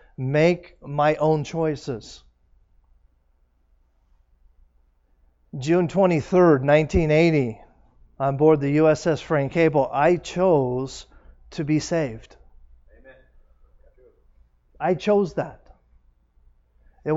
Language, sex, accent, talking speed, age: English, male, American, 75 wpm, 40-59